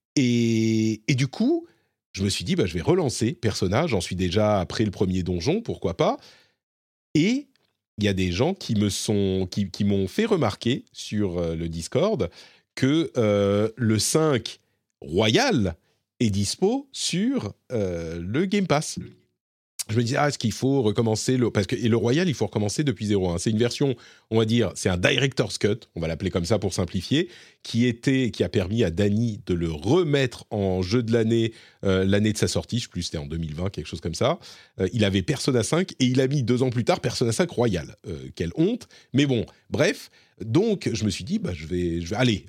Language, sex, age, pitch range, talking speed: French, male, 40-59, 95-135 Hz, 215 wpm